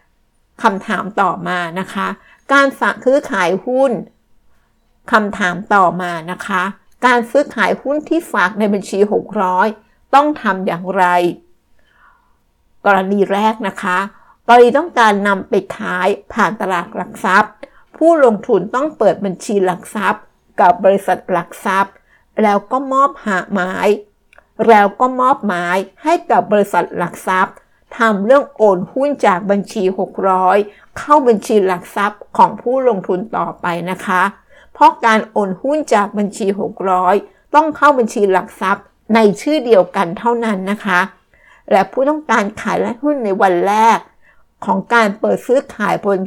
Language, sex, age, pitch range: Thai, female, 60-79, 190-240 Hz